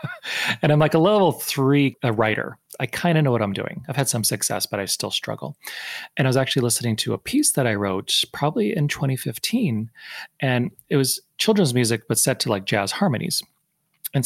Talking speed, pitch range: 205 wpm, 120-170 Hz